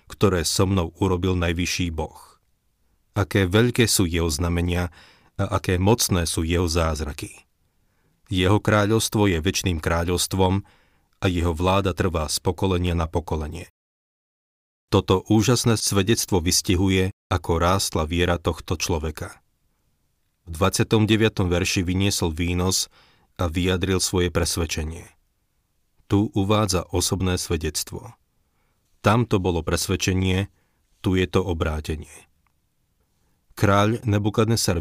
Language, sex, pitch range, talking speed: Slovak, male, 85-100 Hz, 105 wpm